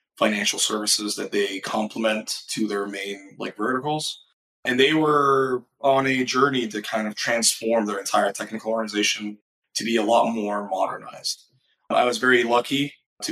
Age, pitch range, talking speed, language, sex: 20-39, 105-135 Hz, 160 wpm, English, male